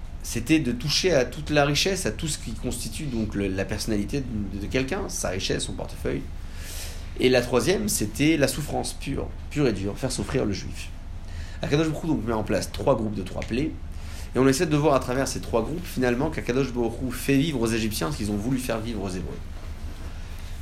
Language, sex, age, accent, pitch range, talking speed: French, male, 30-49, French, 85-115 Hz, 210 wpm